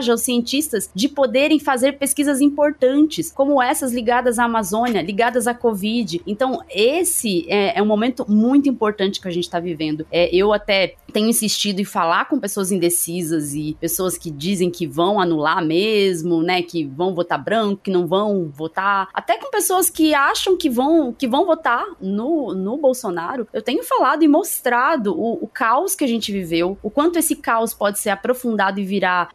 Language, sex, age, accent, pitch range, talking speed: Portuguese, female, 20-39, Brazilian, 185-250 Hz, 180 wpm